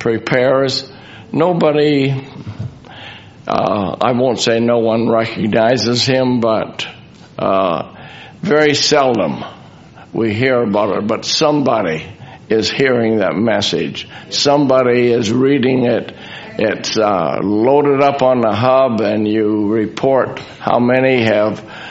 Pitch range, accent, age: 115-135 Hz, American, 60-79